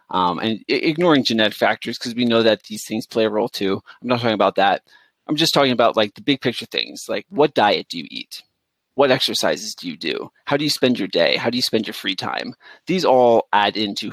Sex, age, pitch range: male, 30-49, 110-150 Hz